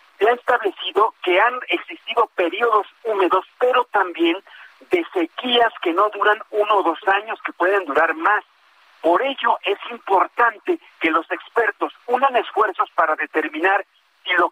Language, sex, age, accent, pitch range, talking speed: Spanish, male, 50-69, Mexican, 185-270 Hz, 150 wpm